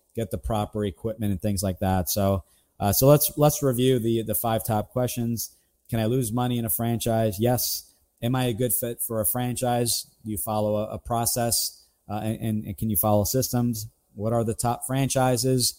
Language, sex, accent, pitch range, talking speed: English, male, American, 105-125 Hz, 200 wpm